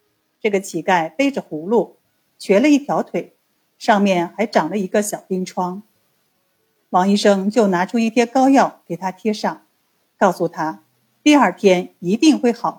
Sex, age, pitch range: female, 50-69, 175-240 Hz